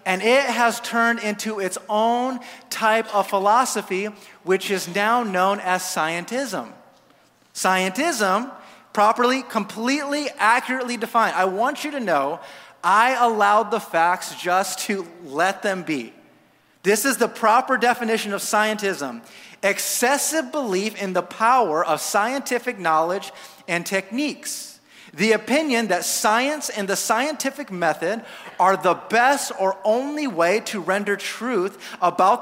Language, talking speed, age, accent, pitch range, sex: English, 130 wpm, 30-49, American, 190-250 Hz, male